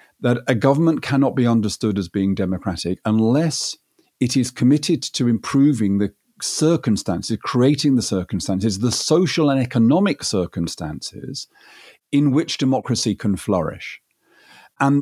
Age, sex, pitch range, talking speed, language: 50-69, male, 105-145 Hz, 125 wpm, English